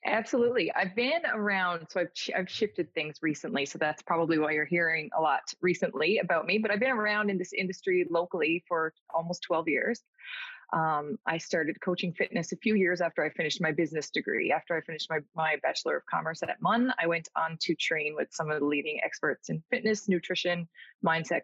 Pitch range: 160-200 Hz